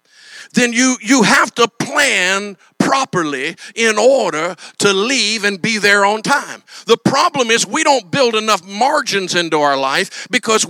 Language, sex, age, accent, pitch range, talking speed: English, male, 50-69, American, 195-260 Hz, 155 wpm